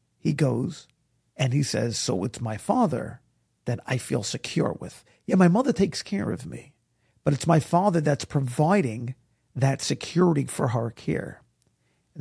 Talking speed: 160 wpm